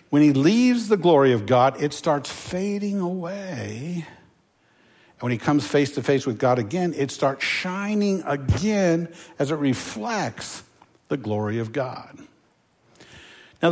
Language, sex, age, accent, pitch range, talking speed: English, male, 60-79, American, 140-185 Hz, 145 wpm